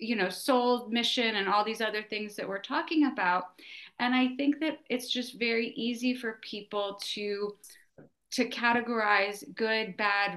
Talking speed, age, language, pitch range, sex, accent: 160 wpm, 30-49, English, 200-265 Hz, female, American